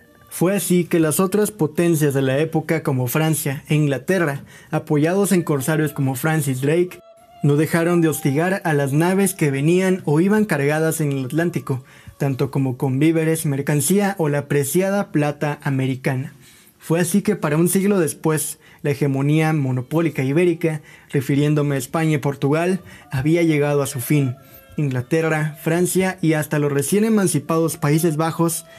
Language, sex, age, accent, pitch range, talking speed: Spanish, male, 20-39, Mexican, 145-175 Hz, 155 wpm